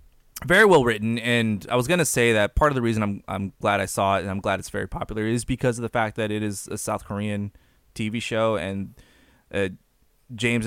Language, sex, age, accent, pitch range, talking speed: English, male, 20-39, American, 100-120 Hz, 230 wpm